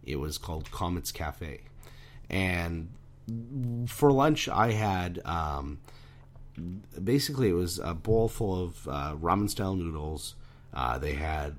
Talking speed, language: 125 wpm, English